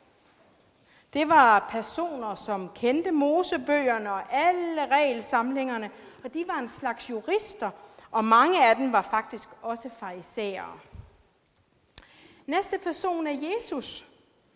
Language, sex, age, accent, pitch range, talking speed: Danish, female, 40-59, native, 230-320 Hz, 110 wpm